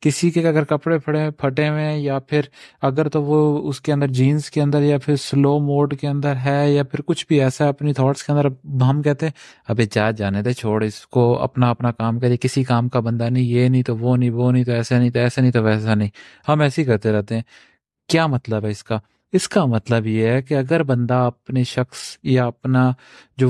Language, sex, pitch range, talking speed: Urdu, male, 125-150 Hz, 255 wpm